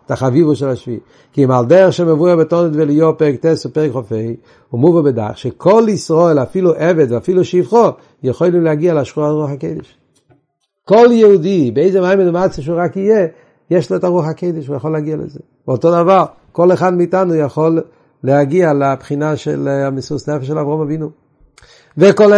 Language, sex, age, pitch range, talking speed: Hebrew, male, 60-79, 135-175 Hz, 165 wpm